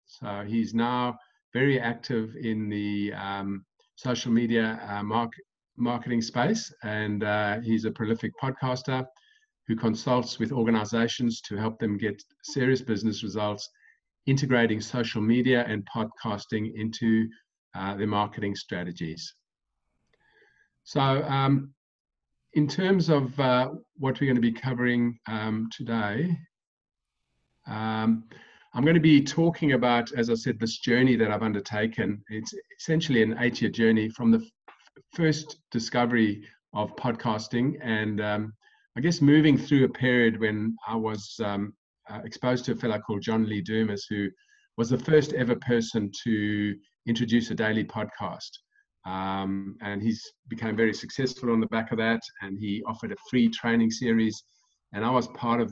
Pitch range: 110-130 Hz